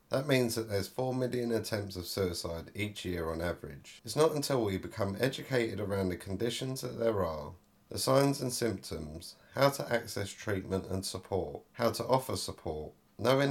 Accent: British